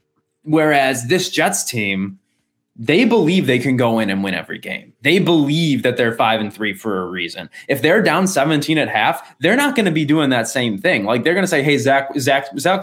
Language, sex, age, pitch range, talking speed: English, male, 20-39, 120-150 Hz, 225 wpm